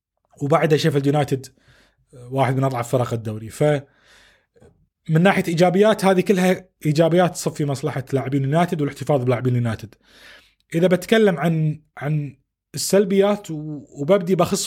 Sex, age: male, 30-49